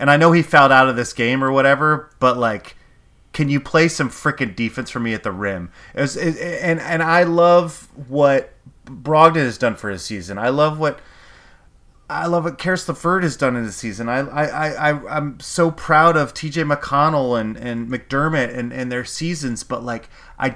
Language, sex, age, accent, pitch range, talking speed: English, male, 30-49, American, 130-185 Hz, 205 wpm